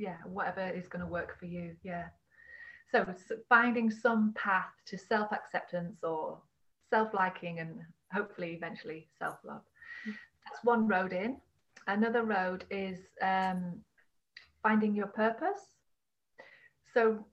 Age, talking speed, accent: 30-49, 115 wpm, British